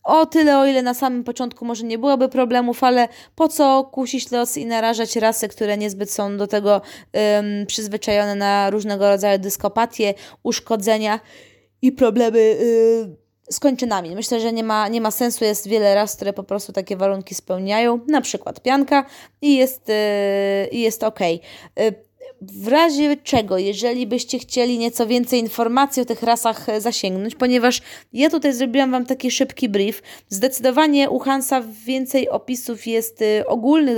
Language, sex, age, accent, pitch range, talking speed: Polish, female, 20-39, native, 210-255 Hz, 155 wpm